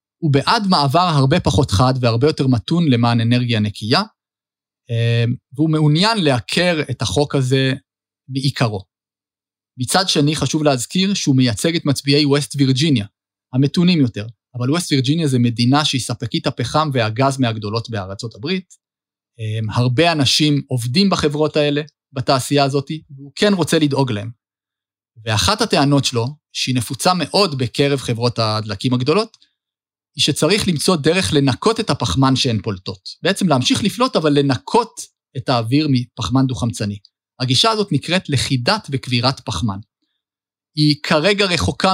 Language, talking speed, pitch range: Hebrew, 130 wpm, 125-155 Hz